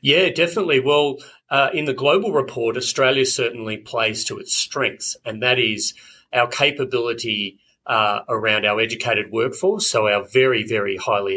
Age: 30-49